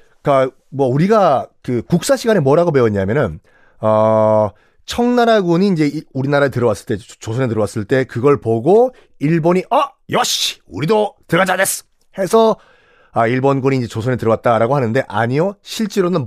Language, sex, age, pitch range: Korean, male, 40-59, 120-195 Hz